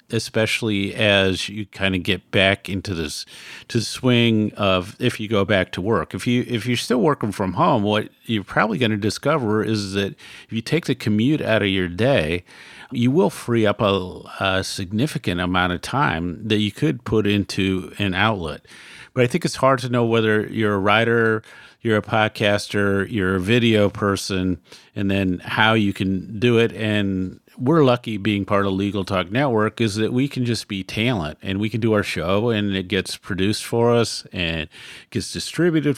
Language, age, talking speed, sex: English, 50-69, 195 wpm, male